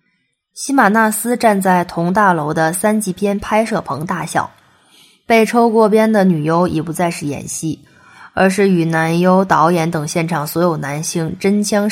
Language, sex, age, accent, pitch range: Chinese, female, 20-39, native, 165-205 Hz